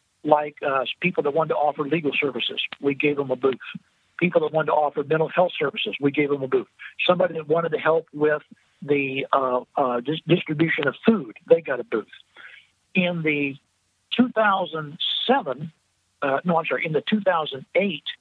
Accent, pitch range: American, 145-205 Hz